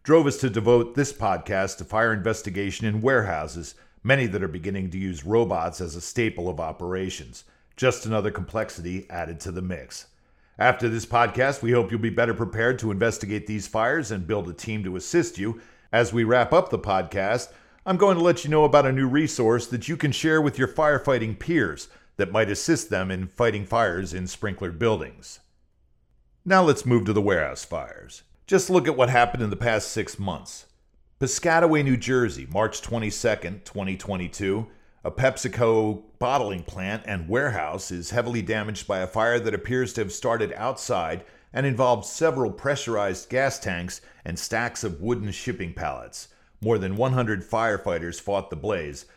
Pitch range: 95-125 Hz